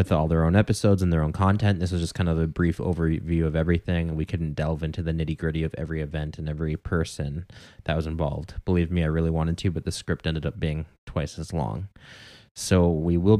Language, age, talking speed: English, 20-39, 235 wpm